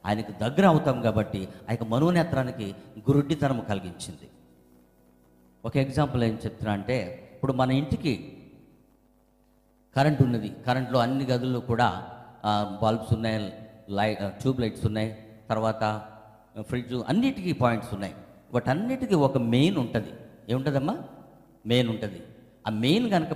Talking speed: 115 wpm